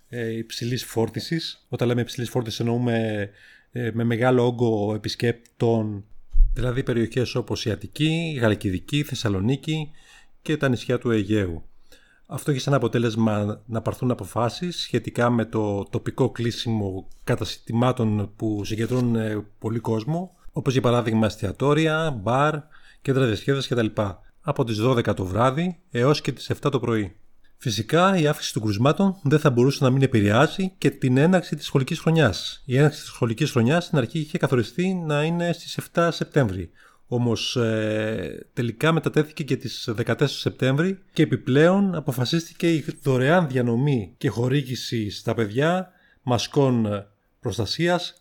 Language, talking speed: Greek, 140 wpm